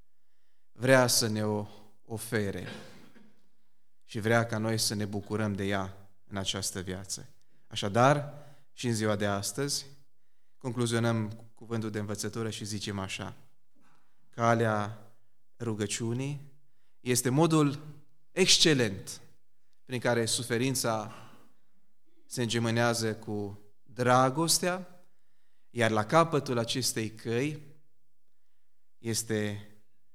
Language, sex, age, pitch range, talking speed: Romanian, male, 20-39, 105-135 Hz, 95 wpm